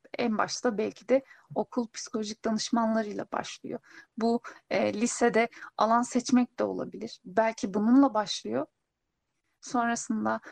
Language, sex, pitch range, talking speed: Turkish, female, 220-260 Hz, 110 wpm